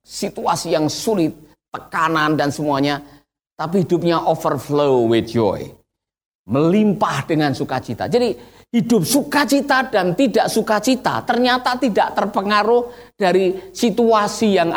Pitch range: 145-235 Hz